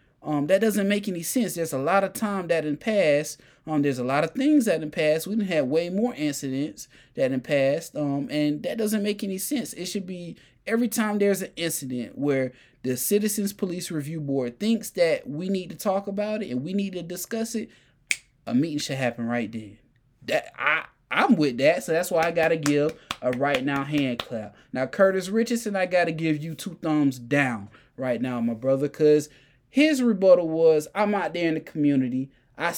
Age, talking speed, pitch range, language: 20-39, 210 wpm, 140-210 Hz, English